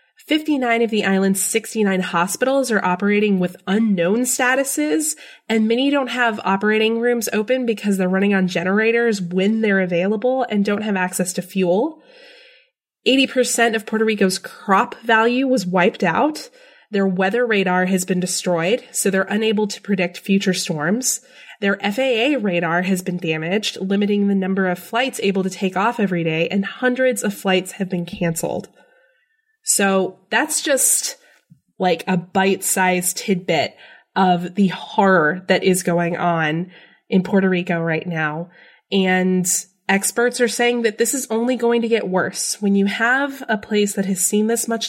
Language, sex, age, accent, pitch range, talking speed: English, female, 20-39, American, 185-235 Hz, 160 wpm